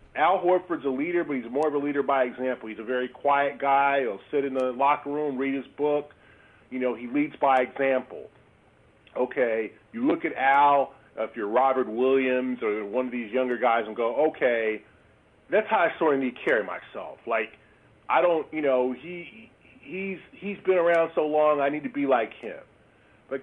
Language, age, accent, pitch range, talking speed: English, 40-59, American, 130-160 Hz, 200 wpm